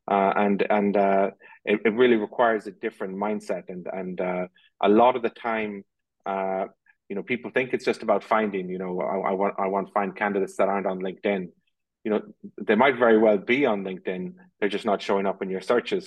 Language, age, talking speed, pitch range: English, 30-49, 220 wpm, 95-115 Hz